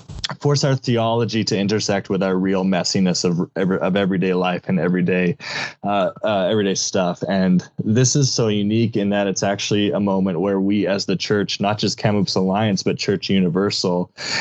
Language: English